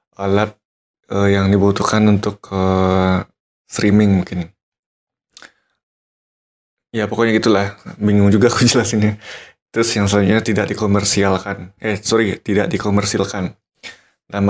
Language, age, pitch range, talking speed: Indonesian, 20-39, 95-110 Hz, 105 wpm